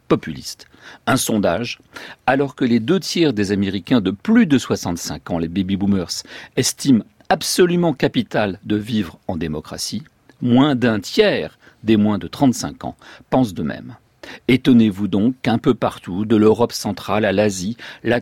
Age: 50-69